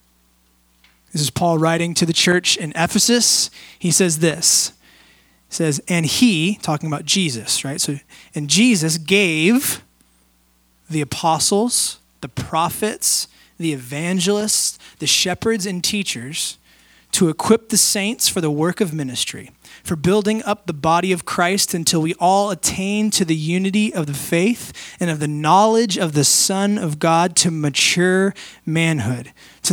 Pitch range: 150-190 Hz